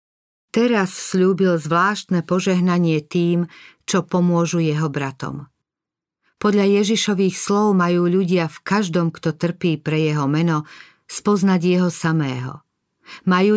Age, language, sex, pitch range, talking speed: 50-69, Slovak, female, 155-190 Hz, 110 wpm